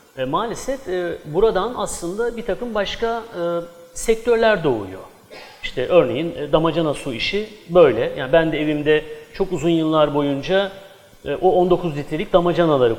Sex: male